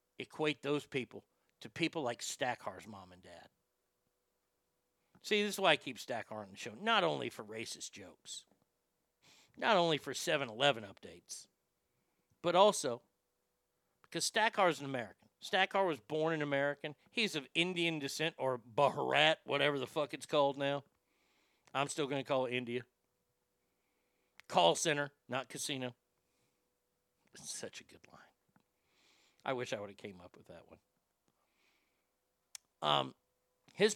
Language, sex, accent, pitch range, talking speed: English, male, American, 130-185 Hz, 140 wpm